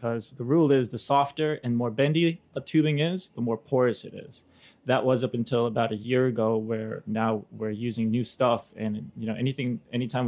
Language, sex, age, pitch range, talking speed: English, male, 20-39, 115-135 Hz, 210 wpm